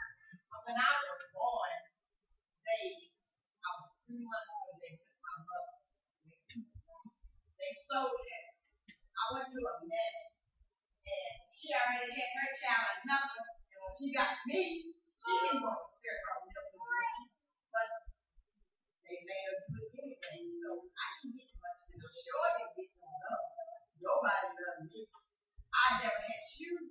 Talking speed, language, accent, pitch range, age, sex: 160 wpm, English, American, 240-340 Hz, 30-49, female